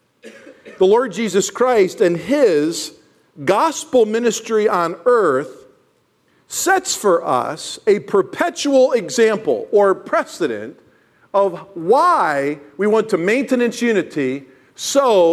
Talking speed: 100 wpm